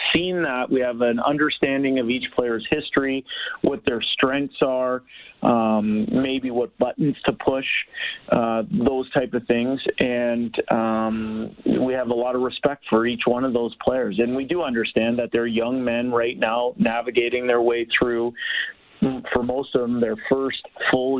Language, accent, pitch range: English, American, 115-135 Hz